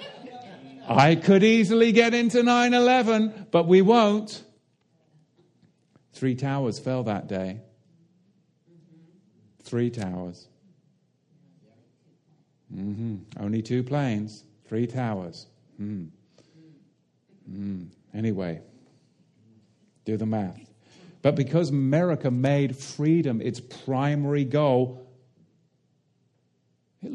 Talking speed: 80 wpm